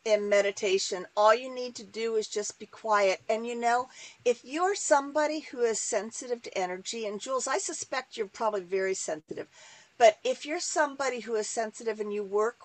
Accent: American